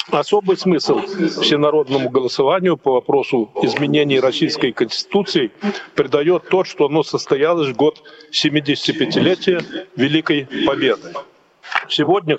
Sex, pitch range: male, 150-195 Hz